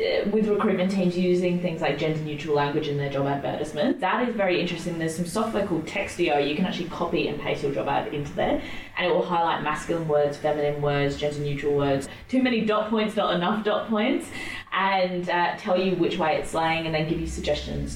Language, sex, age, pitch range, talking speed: English, female, 20-39, 145-195 Hz, 210 wpm